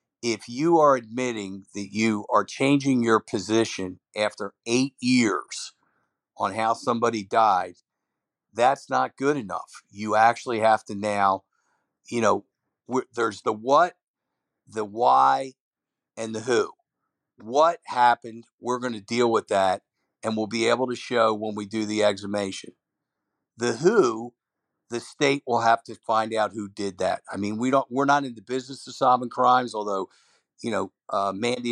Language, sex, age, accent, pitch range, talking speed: English, male, 50-69, American, 110-125 Hz, 155 wpm